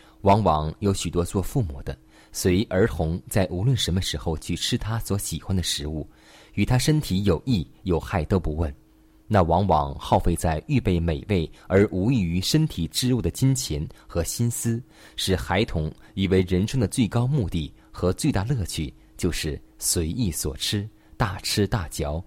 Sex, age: male, 20-39